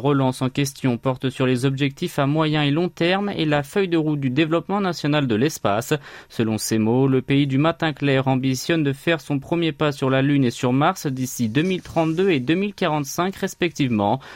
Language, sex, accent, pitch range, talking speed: French, male, French, 130-165 Hz, 195 wpm